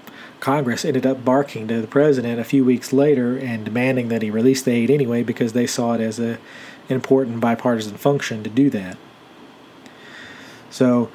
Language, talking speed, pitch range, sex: English, 170 wpm, 115-135 Hz, male